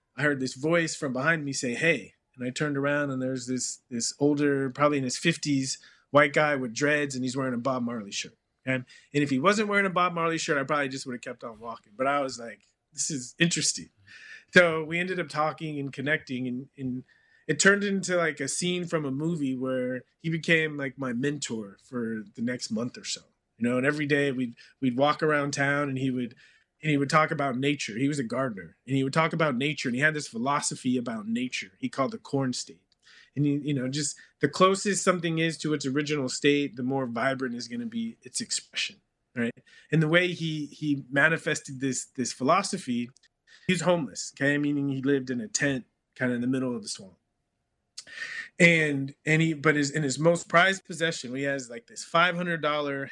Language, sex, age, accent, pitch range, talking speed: English, male, 30-49, American, 130-160 Hz, 215 wpm